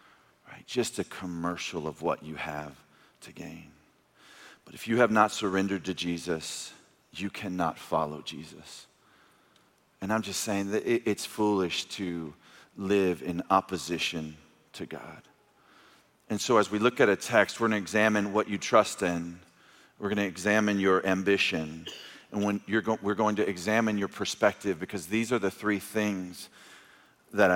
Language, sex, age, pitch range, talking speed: English, male, 40-59, 95-150 Hz, 160 wpm